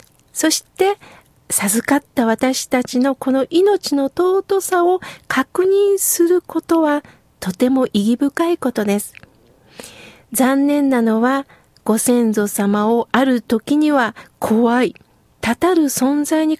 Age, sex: 40-59, female